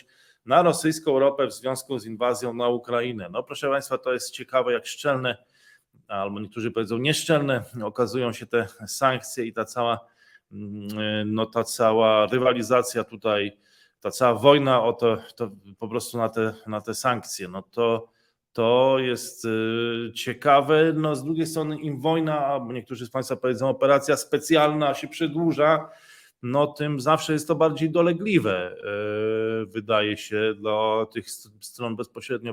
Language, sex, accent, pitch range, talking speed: Polish, male, native, 115-145 Hz, 145 wpm